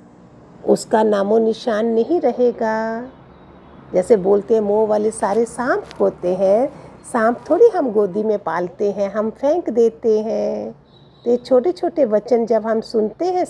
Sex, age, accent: female, 50-69, native